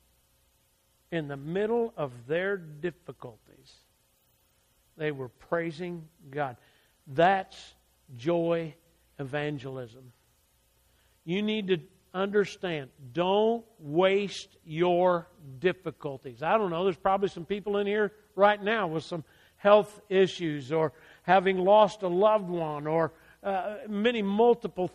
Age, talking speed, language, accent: 50-69, 110 wpm, English, American